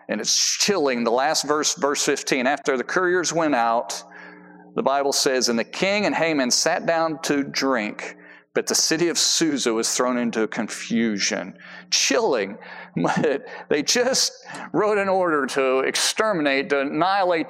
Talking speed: 150 wpm